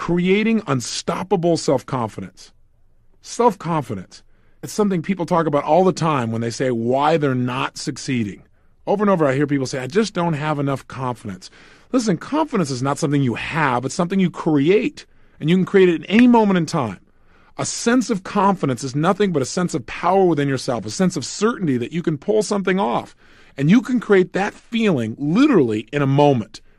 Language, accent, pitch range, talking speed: English, American, 135-205 Hz, 195 wpm